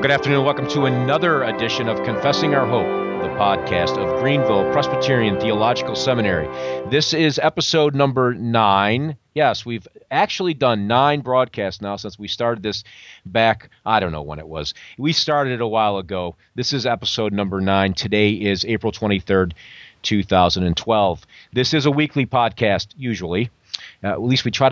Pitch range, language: 100-130 Hz, English